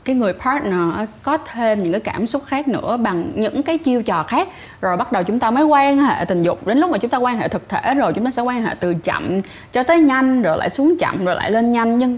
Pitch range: 195-265 Hz